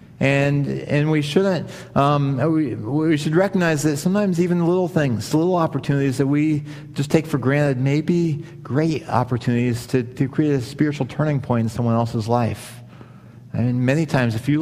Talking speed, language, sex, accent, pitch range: 170 wpm, English, male, American, 115-150 Hz